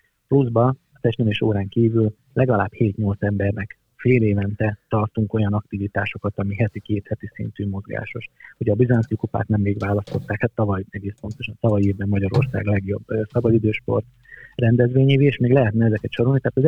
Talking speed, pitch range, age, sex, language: 160 wpm, 105-125 Hz, 30-49, male, Hungarian